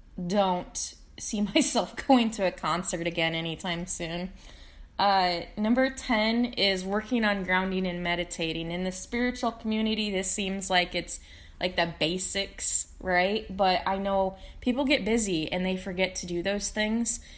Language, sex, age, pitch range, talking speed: English, female, 20-39, 180-220 Hz, 150 wpm